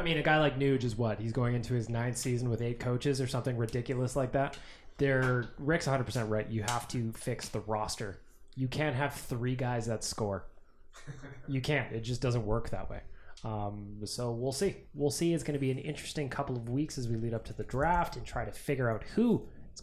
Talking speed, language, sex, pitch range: 225 wpm, English, male, 115-145 Hz